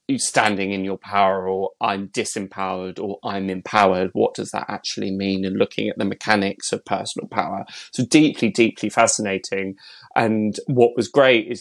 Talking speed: 165 wpm